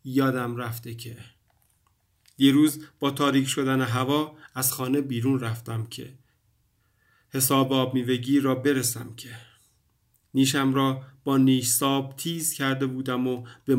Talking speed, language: 125 wpm, Persian